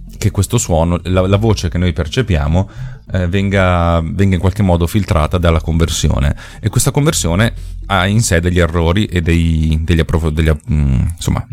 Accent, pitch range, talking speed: native, 85-100 Hz, 170 wpm